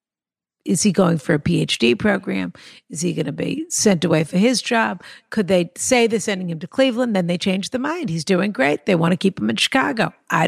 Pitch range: 205-255 Hz